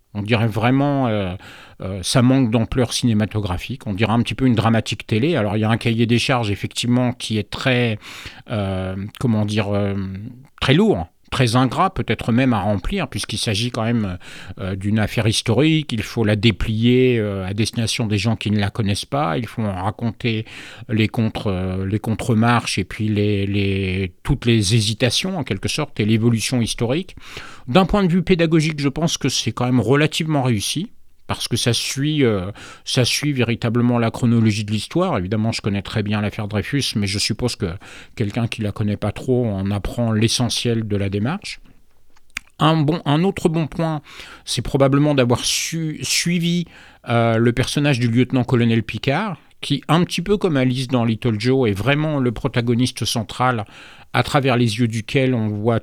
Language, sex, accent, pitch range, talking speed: English, male, French, 105-130 Hz, 185 wpm